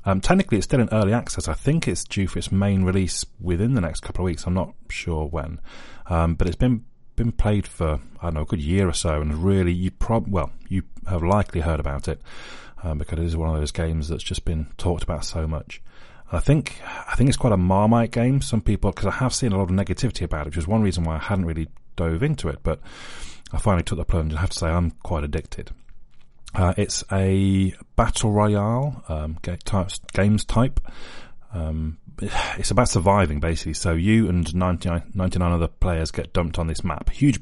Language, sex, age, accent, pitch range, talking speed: English, male, 30-49, British, 80-100 Hz, 220 wpm